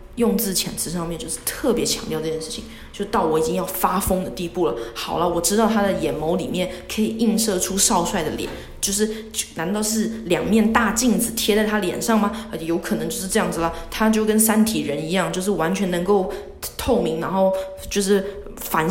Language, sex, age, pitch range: Chinese, female, 20-39, 180-220 Hz